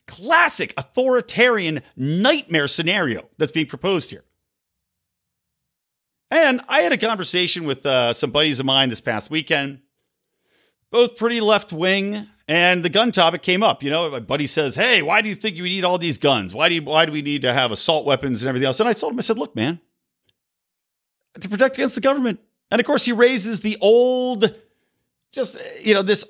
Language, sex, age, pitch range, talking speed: English, male, 40-59, 150-245 Hz, 190 wpm